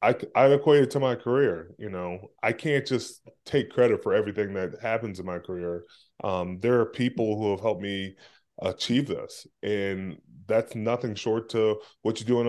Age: 20-39